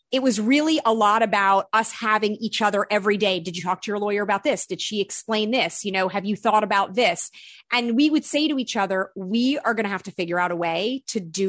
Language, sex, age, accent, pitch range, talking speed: English, female, 30-49, American, 190-235 Hz, 260 wpm